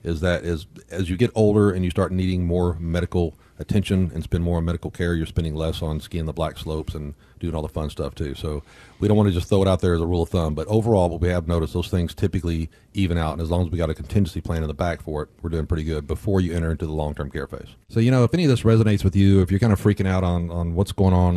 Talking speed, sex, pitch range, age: 305 wpm, male, 85-100 Hz, 40-59